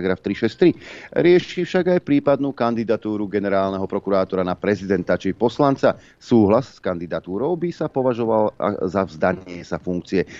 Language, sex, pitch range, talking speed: Slovak, male, 90-115 Hz, 125 wpm